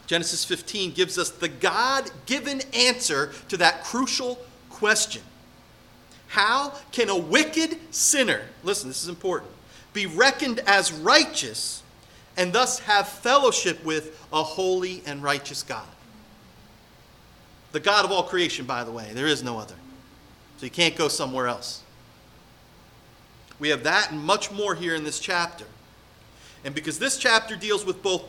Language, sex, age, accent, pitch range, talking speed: English, male, 40-59, American, 145-225 Hz, 145 wpm